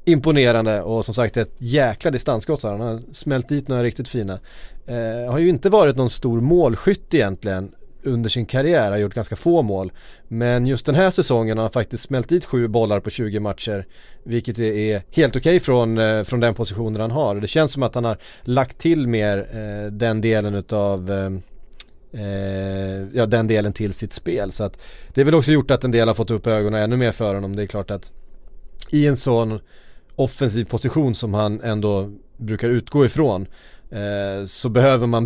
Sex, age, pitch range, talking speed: male, 30-49, 105-125 Hz, 190 wpm